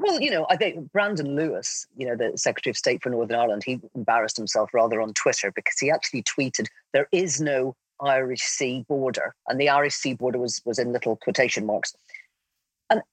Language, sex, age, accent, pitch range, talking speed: English, female, 40-59, British, 125-180 Hz, 200 wpm